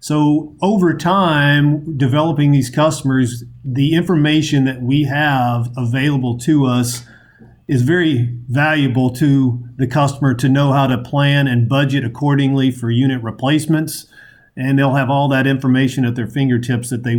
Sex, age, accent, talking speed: male, 50-69, American, 145 wpm